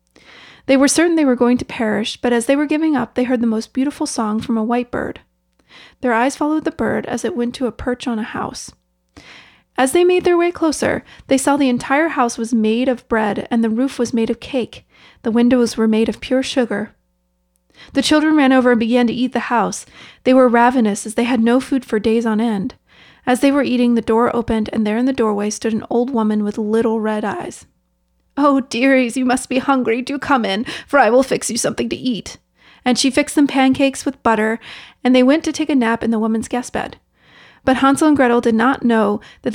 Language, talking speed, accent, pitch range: English, 230 wpm, American, 225-265 Hz